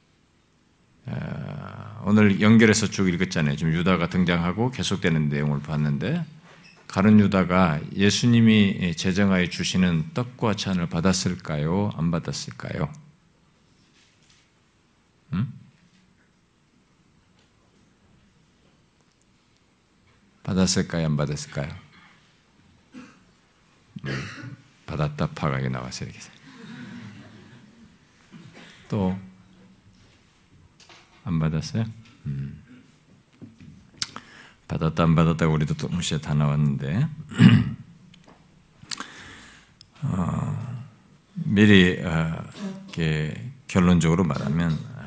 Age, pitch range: 50-69, 80-125 Hz